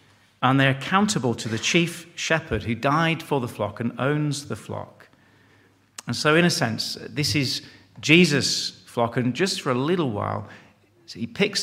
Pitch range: 110-140 Hz